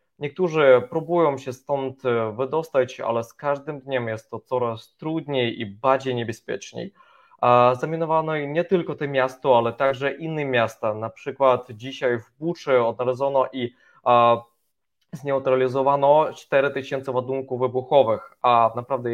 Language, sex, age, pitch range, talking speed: Polish, male, 20-39, 125-150 Hz, 120 wpm